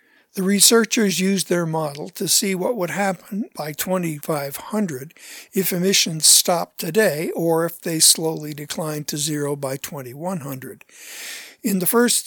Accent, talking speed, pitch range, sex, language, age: American, 135 wpm, 160-200 Hz, male, English, 60-79